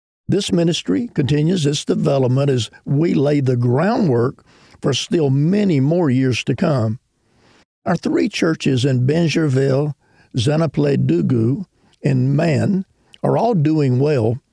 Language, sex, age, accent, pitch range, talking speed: English, male, 50-69, American, 130-155 Hz, 120 wpm